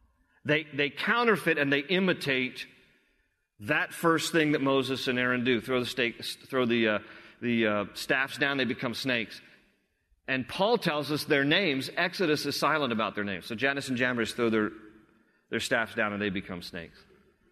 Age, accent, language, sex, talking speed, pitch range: 40-59, American, English, male, 180 wpm, 130-155 Hz